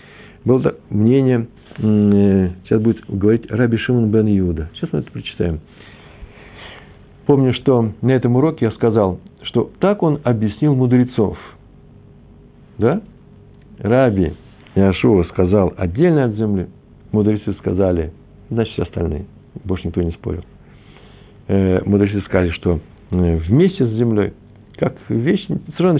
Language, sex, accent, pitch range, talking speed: Russian, male, native, 95-125 Hz, 115 wpm